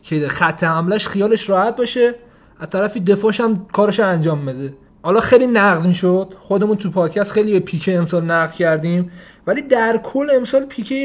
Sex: male